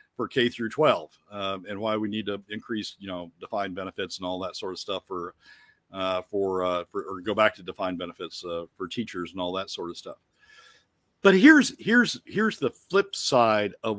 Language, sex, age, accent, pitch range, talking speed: English, male, 50-69, American, 105-135 Hz, 210 wpm